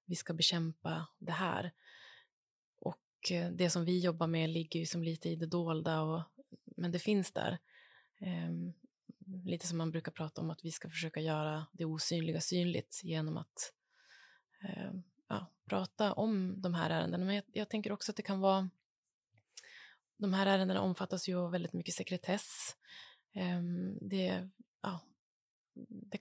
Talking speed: 160 wpm